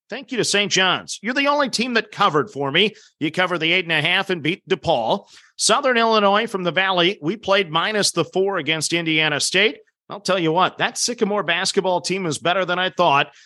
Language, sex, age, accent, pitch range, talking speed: English, male, 40-59, American, 165-210 Hz, 220 wpm